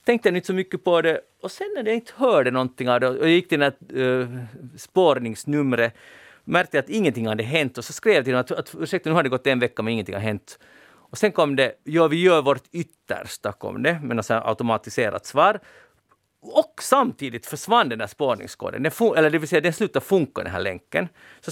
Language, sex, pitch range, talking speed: Swedish, male, 125-180 Hz, 220 wpm